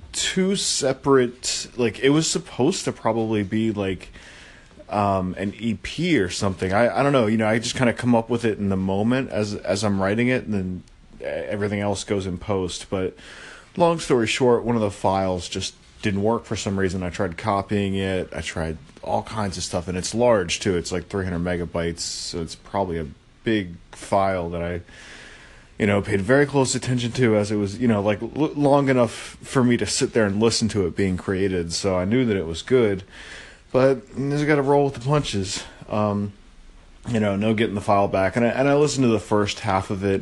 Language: English